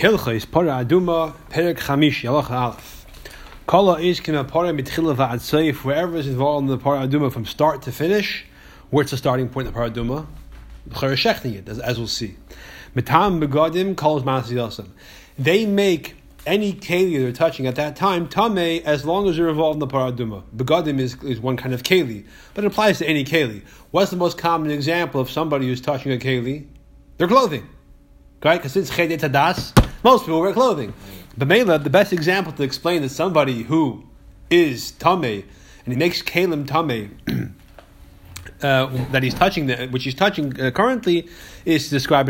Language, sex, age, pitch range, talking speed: English, male, 30-49, 125-165 Hz, 145 wpm